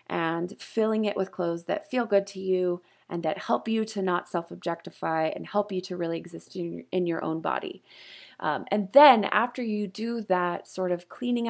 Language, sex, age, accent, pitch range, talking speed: English, female, 20-39, American, 185-245 Hz, 195 wpm